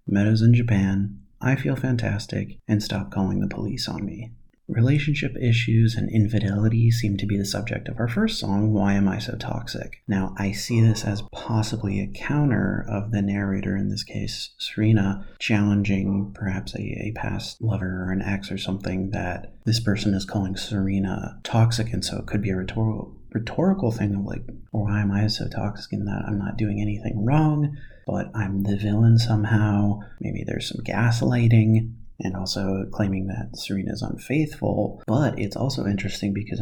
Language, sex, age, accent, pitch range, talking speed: English, male, 30-49, American, 100-115 Hz, 175 wpm